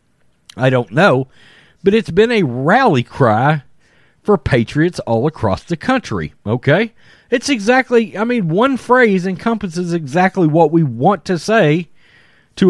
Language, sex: English, male